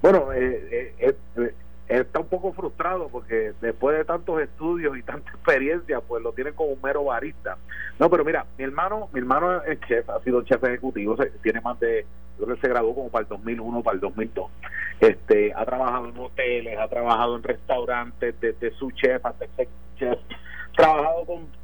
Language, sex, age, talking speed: Spanish, male, 30-49, 195 wpm